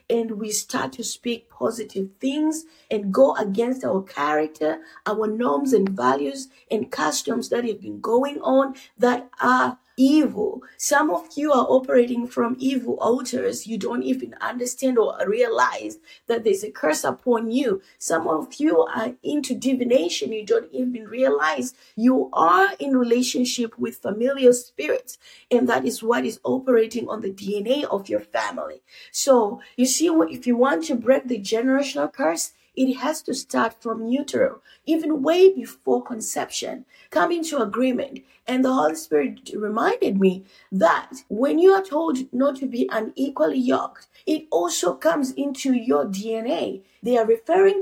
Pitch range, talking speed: 225-285 Hz, 155 wpm